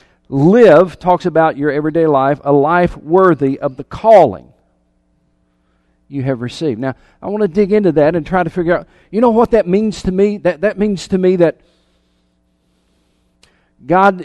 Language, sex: English, male